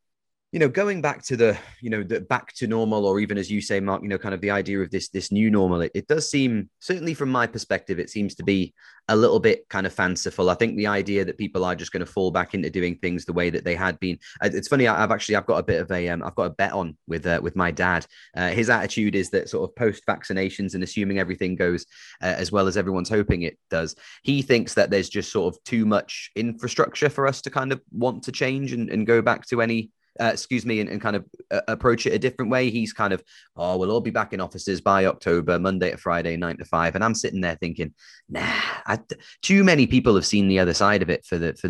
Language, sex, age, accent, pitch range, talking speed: English, male, 20-39, British, 90-115 Hz, 270 wpm